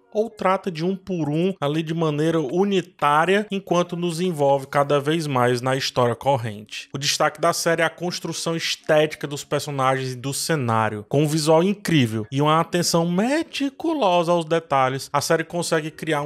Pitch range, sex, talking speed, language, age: 130-175 Hz, male, 170 wpm, Portuguese, 20-39